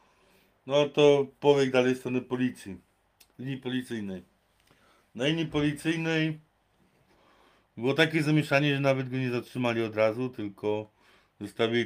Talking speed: 120 wpm